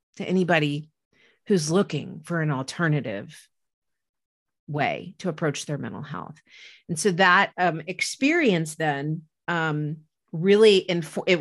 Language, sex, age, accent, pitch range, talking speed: English, female, 40-59, American, 155-195 Hz, 115 wpm